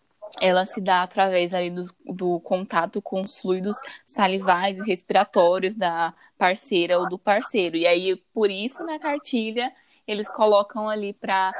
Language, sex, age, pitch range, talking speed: Portuguese, female, 10-29, 170-230 Hz, 150 wpm